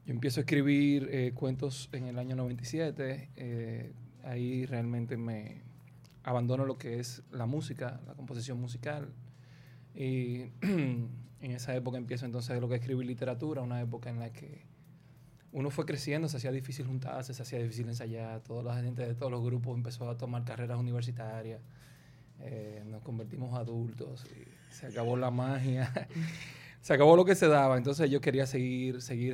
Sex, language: male, English